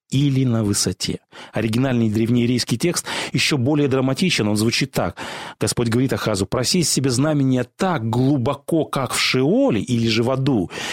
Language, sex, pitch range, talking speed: Russian, male, 120-180 Hz, 150 wpm